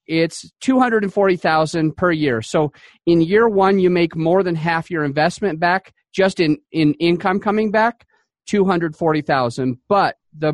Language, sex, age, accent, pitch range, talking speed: English, male, 40-59, American, 150-195 Hz, 140 wpm